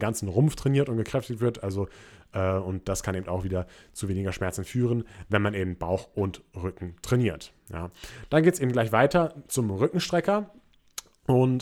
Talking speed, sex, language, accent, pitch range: 180 wpm, male, German, German, 95-120 Hz